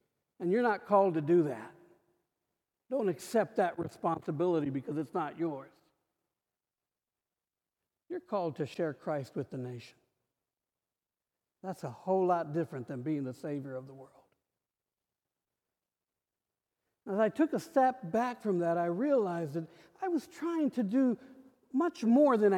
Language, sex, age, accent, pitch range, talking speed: English, male, 60-79, American, 145-220 Hz, 145 wpm